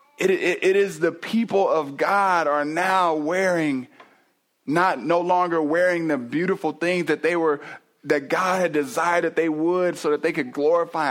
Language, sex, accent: English, male, American